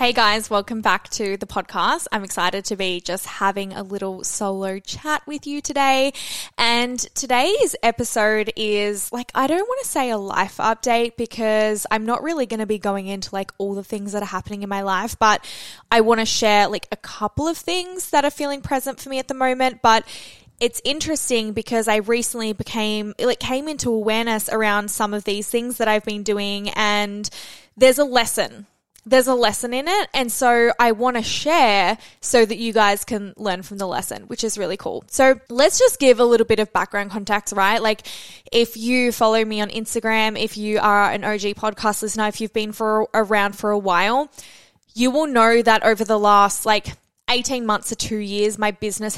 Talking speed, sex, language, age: 205 wpm, female, English, 10-29